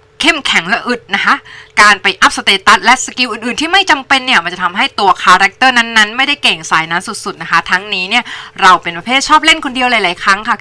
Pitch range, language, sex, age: 185-260 Hz, Thai, female, 20-39